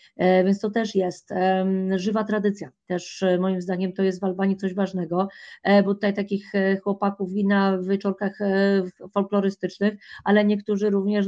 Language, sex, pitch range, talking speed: Polish, female, 190-210 Hz, 140 wpm